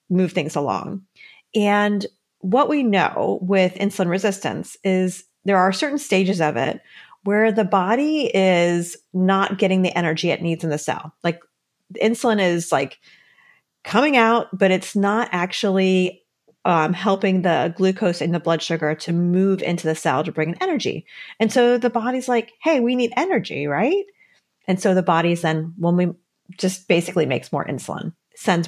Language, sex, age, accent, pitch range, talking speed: English, female, 40-59, American, 170-215 Hz, 170 wpm